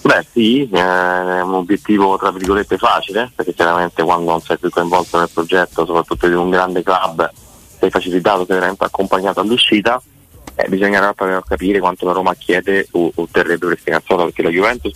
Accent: native